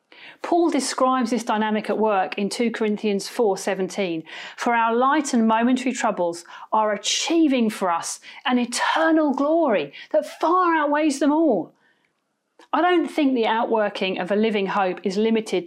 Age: 40-59